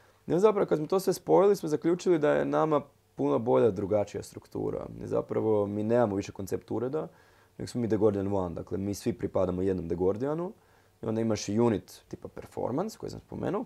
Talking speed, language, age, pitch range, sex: 200 wpm, Croatian, 20-39, 100-140 Hz, male